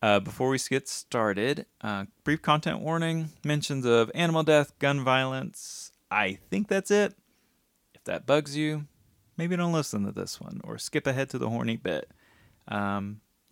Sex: male